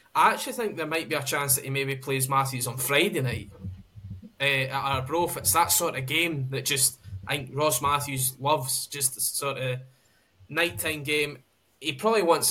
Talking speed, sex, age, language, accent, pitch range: 190 wpm, male, 10-29, English, British, 130-145 Hz